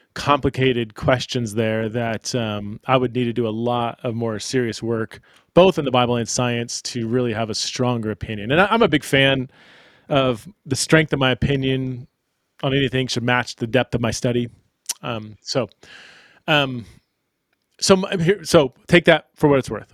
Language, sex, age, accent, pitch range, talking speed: English, male, 30-49, American, 120-150 Hz, 185 wpm